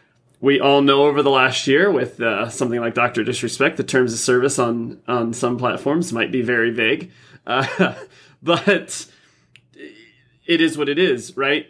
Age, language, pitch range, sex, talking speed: 30-49, English, 120-145 Hz, male, 170 wpm